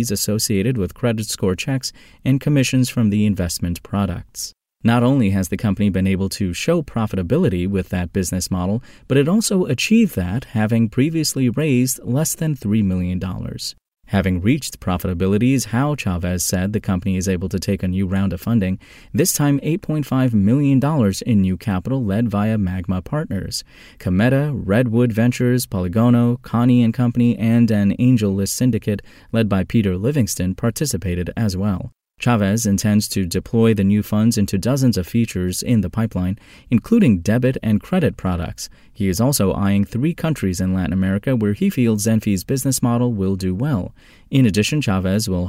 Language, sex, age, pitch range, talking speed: English, male, 30-49, 95-125 Hz, 165 wpm